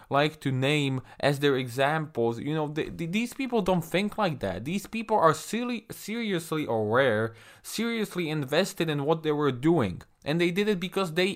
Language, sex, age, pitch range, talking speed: English, male, 20-39, 145-195 Hz, 175 wpm